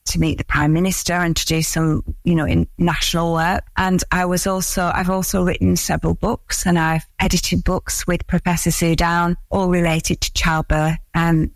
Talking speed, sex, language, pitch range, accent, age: 185 wpm, female, English, 160-180 Hz, British, 40-59